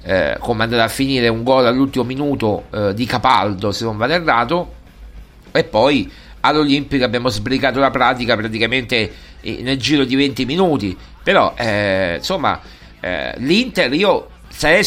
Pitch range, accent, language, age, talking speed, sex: 125-170 Hz, native, Italian, 50-69, 155 wpm, male